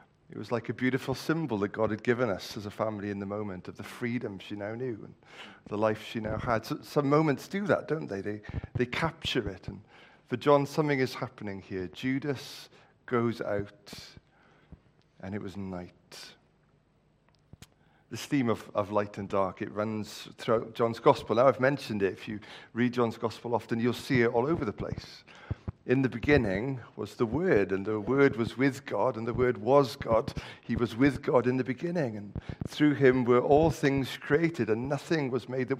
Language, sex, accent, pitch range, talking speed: English, male, British, 110-140 Hz, 200 wpm